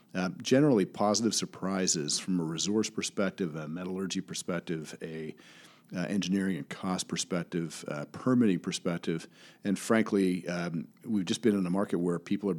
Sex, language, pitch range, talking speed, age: male, English, 90-105 Hz, 155 wpm, 40-59